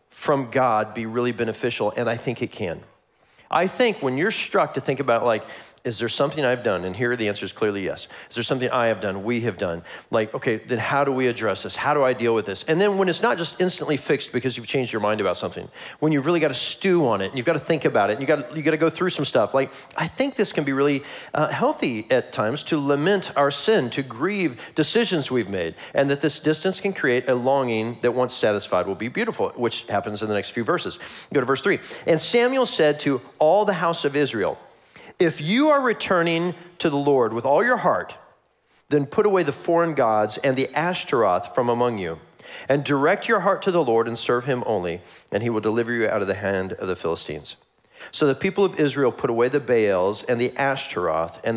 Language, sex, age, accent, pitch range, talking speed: English, male, 40-59, American, 115-165 Hz, 240 wpm